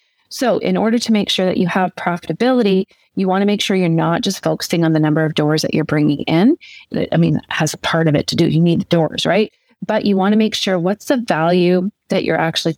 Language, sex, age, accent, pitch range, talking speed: English, female, 30-49, American, 175-215 Hz, 245 wpm